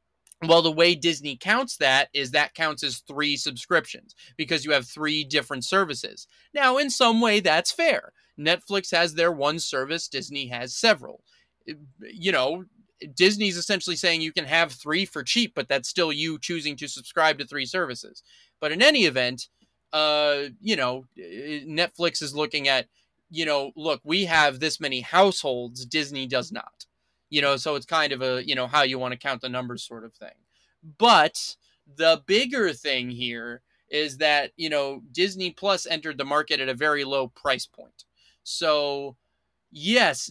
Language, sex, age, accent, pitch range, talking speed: English, male, 20-39, American, 130-170 Hz, 175 wpm